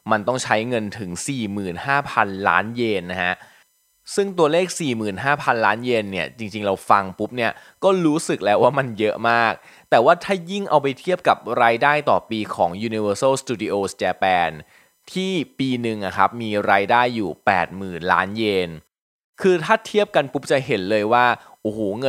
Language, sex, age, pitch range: Thai, male, 20-39, 105-145 Hz